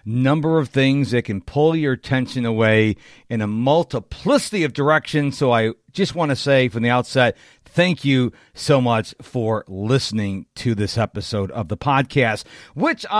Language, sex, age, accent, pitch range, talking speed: English, male, 50-69, American, 125-175 Hz, 165 wpm